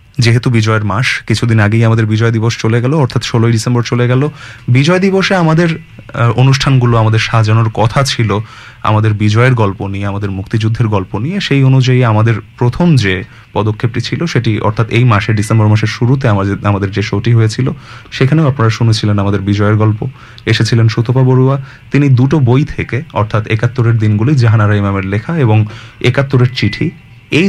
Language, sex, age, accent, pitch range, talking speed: English, male, 30-49, Indian, 110-130 Hz, 120 wpm